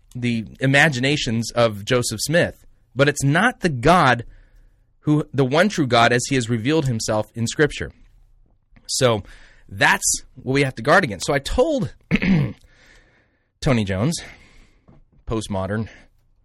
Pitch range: 105-130 Hz